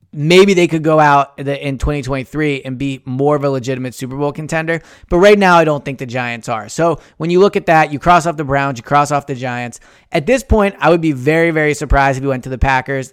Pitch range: 130-165 Hz